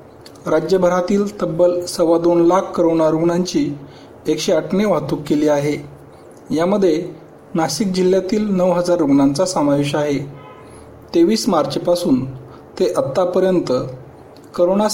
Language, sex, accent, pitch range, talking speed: Marathi, male, native, 150-190 Hz, 90 wpm